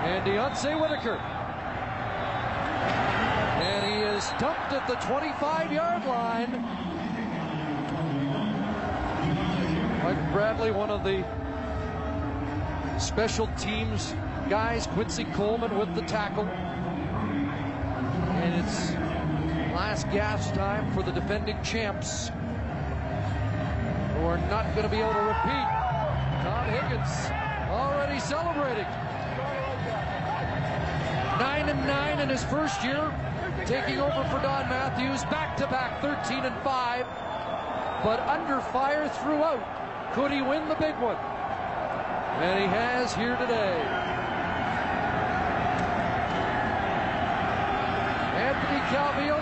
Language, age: English, 40-59